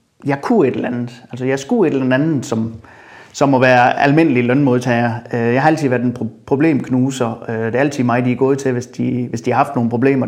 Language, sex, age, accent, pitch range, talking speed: Danish, male, 30-49, native, 125-150 Hz, 230 wpm